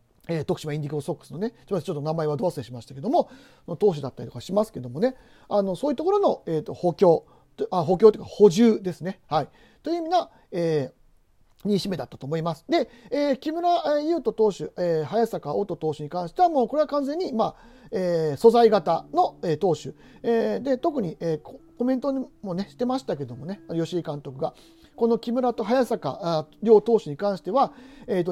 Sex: male